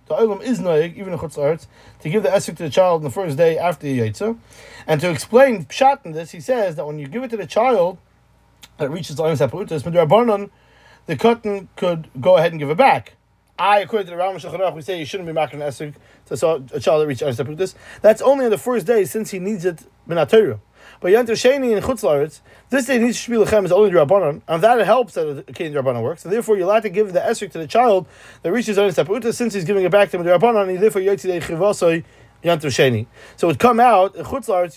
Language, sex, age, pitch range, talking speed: English, male, 30-49, 160-215 Hz, 230 wpm